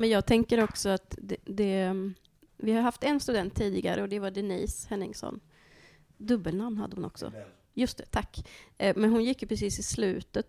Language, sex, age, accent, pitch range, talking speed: Swedish, female, 30-49, native, 190-225 Hz, 185 wpm